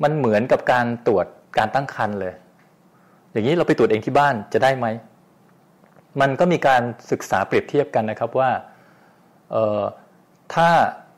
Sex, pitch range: male, 110-150 Hz